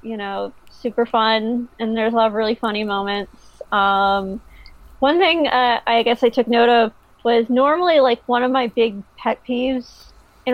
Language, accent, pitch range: English, American, 220-265 Hz